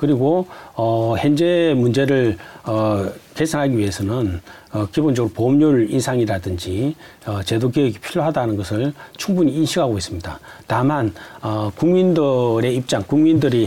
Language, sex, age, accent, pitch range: Korean, male, 40-59, native, 110-170 Hz